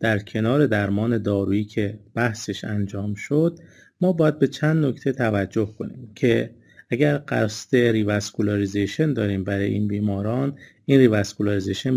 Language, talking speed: Persian, 125 wpm